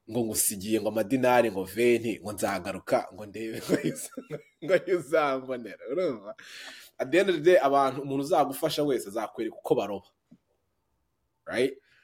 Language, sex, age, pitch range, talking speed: English, male, 20-39, 110-135 Hz, 55 wpm